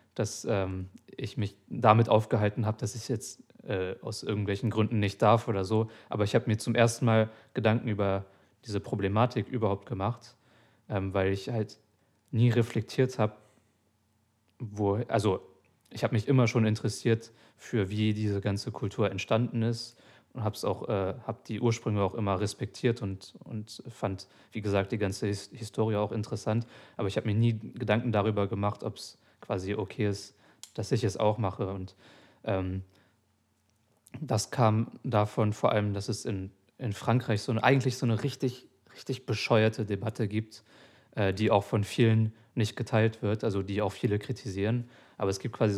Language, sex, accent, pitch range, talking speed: German, male, German, 100-115 Hz, 170 wpm